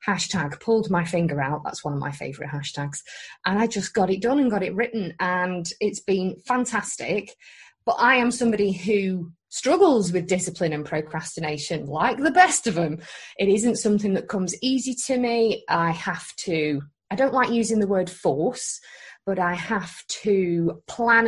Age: 30-49